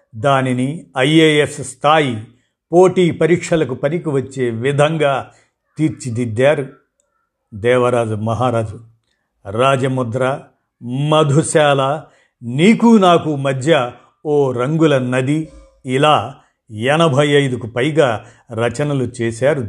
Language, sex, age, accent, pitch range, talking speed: Telugu, male, 50-69, native, 125-155 Hz, 75 wpm